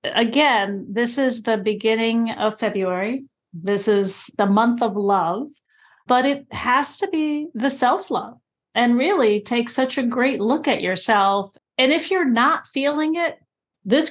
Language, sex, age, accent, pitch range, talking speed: English, female, 40-59, American, 210-260 Hz, 155 wpm